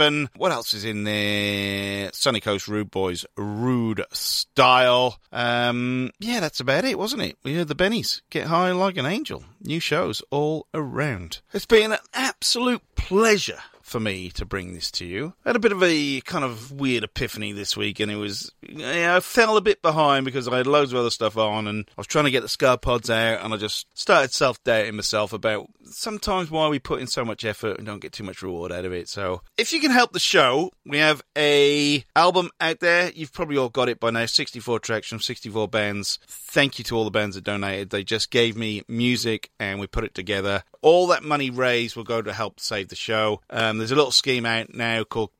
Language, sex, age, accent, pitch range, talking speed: English, male, 30-49, British, 105-150 Hz, 220 wpm